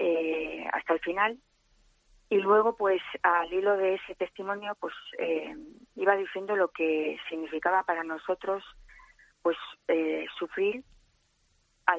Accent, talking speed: Spanish, 125 wpm